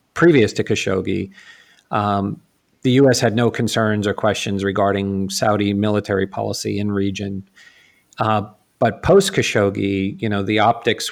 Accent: American